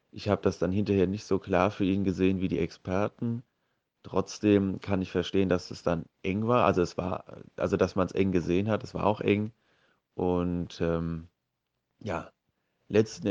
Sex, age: male, 30-49